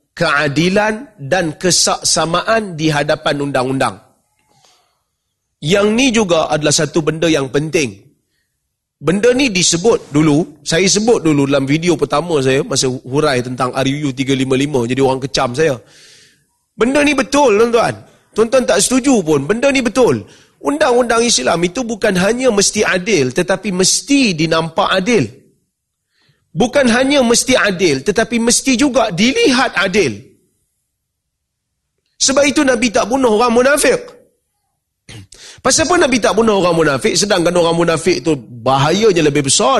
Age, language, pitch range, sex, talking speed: 30-49, Malay, 155-235 Hz, male, 130 wpm